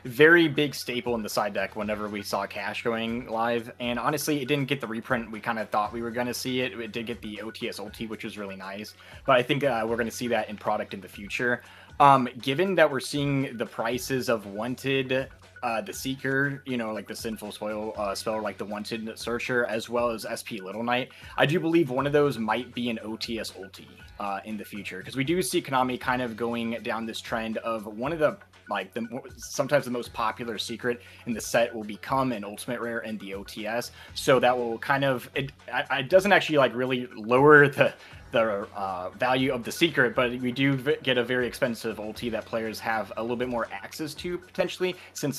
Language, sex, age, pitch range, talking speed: English, male, 20-39, 110-130 Hz, 225 wpm